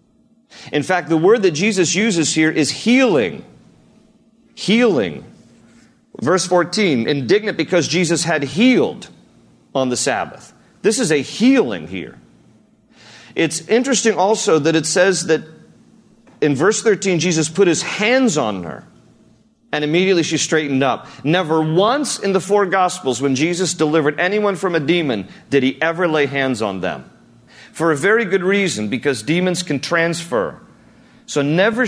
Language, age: English, 40-59